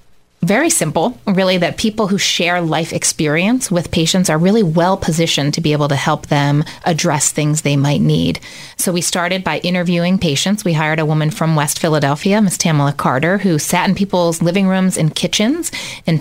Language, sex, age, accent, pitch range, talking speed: English, female, 30-49, American, 145-175 Hz, 190 wpm